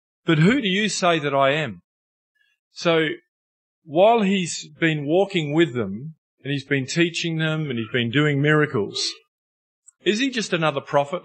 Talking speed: 160 wpm